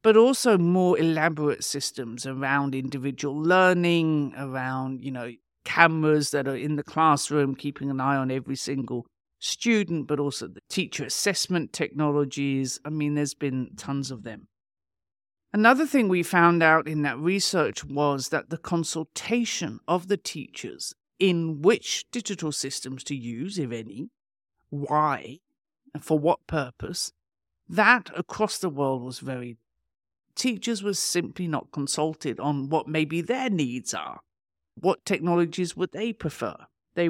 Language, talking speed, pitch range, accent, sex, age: English, 140 wpm, 135-175 Hz, British, male, 50-69